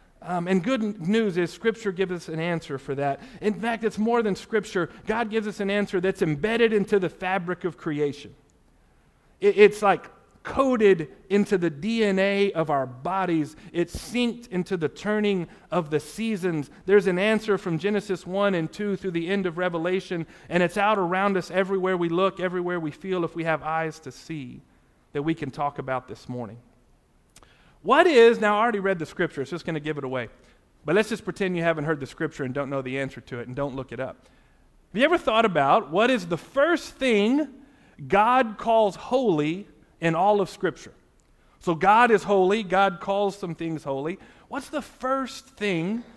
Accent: American